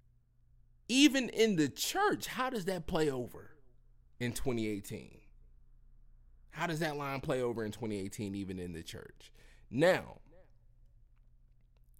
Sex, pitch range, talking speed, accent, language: male, 90-145 Hz, 120 wpm, American, English